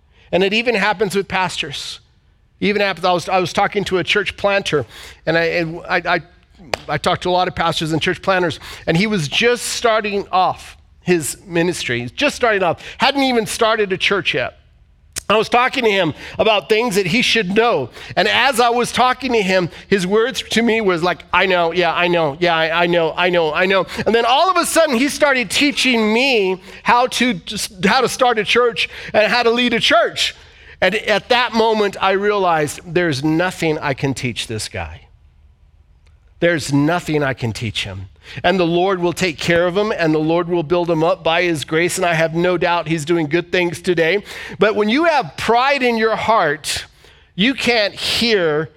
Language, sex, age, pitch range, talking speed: English, male, 40-59, 165-230 Hz, 205 wpm